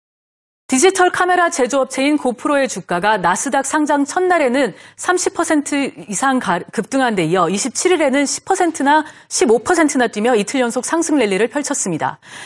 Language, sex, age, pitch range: Korean, female, 40-59, 230-315 Hz